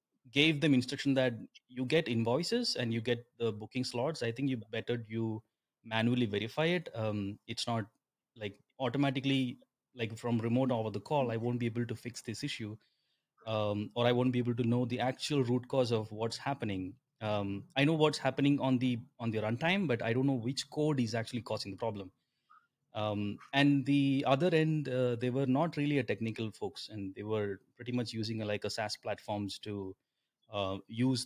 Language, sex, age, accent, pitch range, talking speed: English, male, 30-49, Indian, 110-130 Hz, 200 wpm